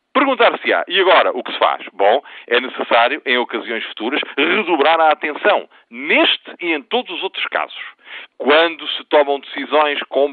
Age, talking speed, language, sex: 40-59, 165 wpm, Portuguese, male